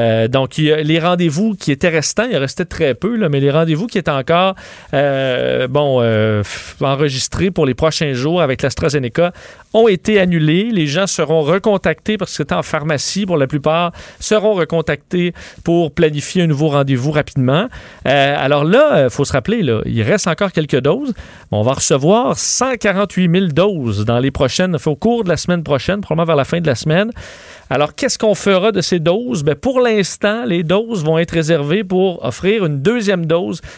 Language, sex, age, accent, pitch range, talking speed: French, male, 40-59, Canadian, 145-185 Hz, 175 wpm